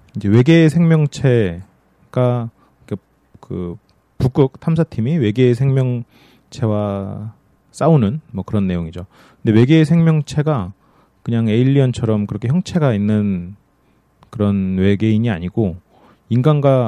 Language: Korean